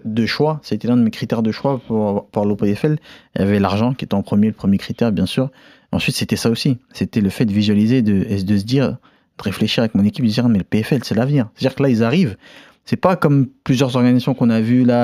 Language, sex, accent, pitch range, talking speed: French, male, French, 110-150 Hz, 265 wpm